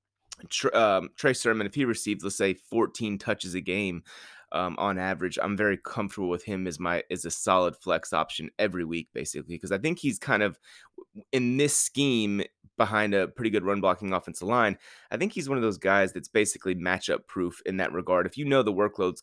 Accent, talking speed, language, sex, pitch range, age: American, 205 wpm, English, male, 90-120 Hz, 30-49